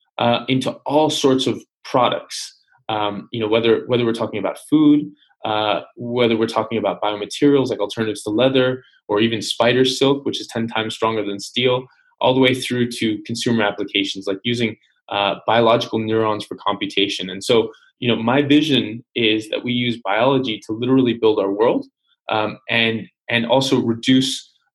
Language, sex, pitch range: English, male, 105-125 Hz